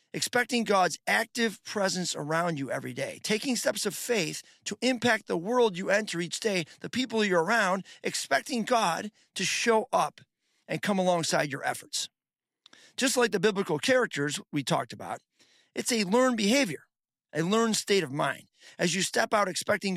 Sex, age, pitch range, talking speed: male, 40-59, 150-210 Hz, 170 wpm